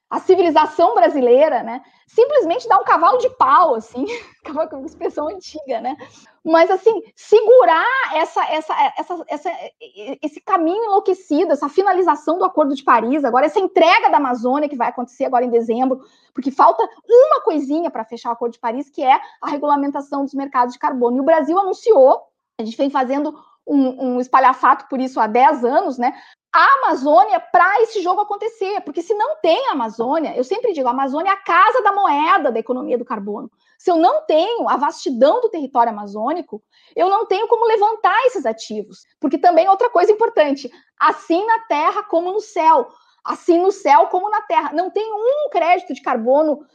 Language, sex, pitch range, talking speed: Portuguese, female, 275-390 Hz, 180 wpm